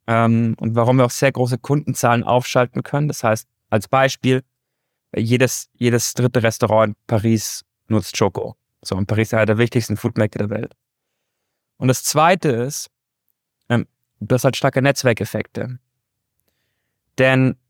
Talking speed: 140 wpm